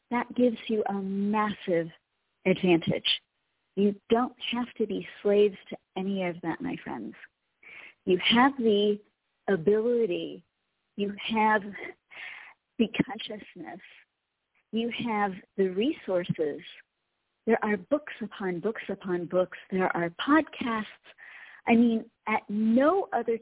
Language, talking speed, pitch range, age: English, 115 wpm, 185-225 Hz, 40-59